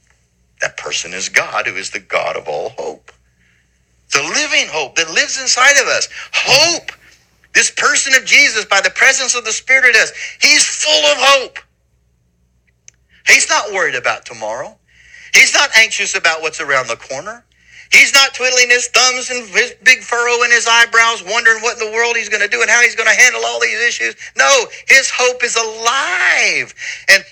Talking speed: 185 wpm